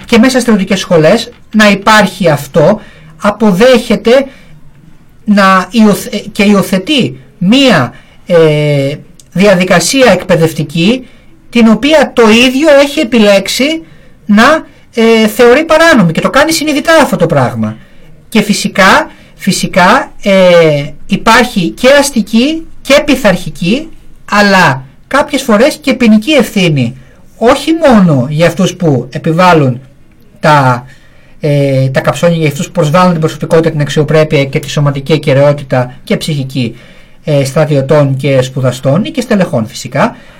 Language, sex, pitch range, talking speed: Greek, male, 145-225 Hz, 120 wpm